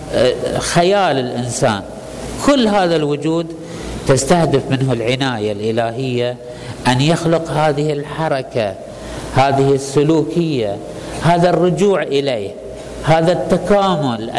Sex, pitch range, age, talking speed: male, 130-170 Hz, 50-69, 85 wpm